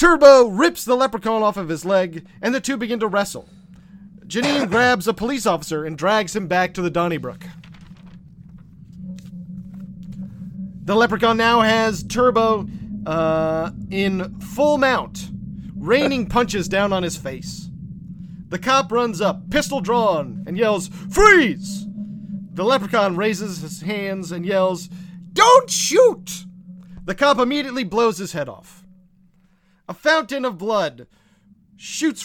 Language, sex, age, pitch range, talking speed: English, male, 40-59, 180-225 Hz, 130 wpm